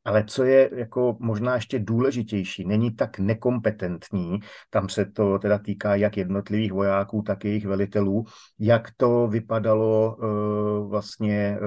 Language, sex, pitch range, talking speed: Slovak, male, 100-110 Hz, 135 wpm